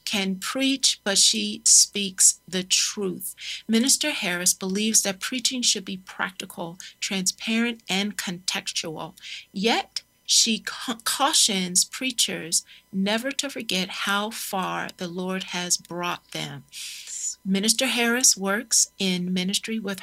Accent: American